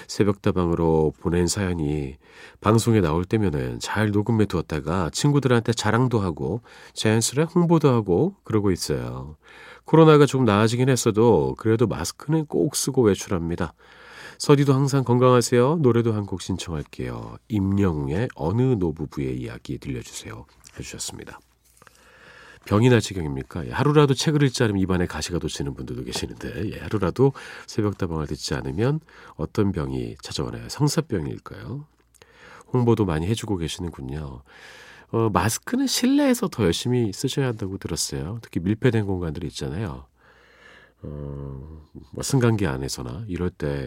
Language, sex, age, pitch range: Korean, male, 40-59, 80-120 Hz